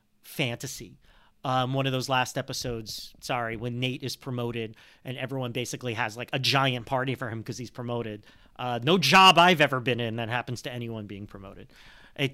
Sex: male